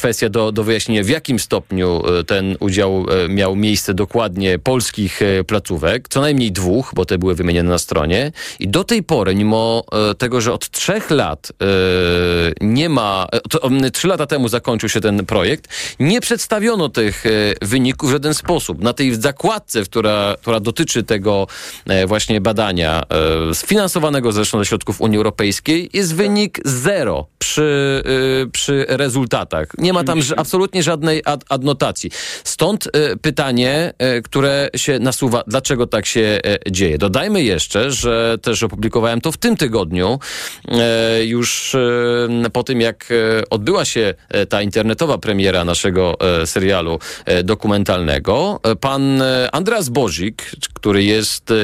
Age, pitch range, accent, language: 40-59, 100-135 Hz, native, Polish